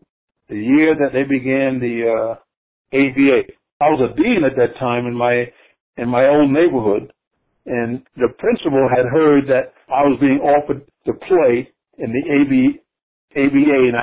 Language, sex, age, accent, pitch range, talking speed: English, male, 60-79, American, 130-185 Hz, 165 wpm